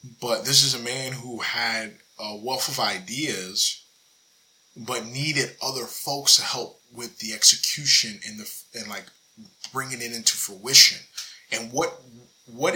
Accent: American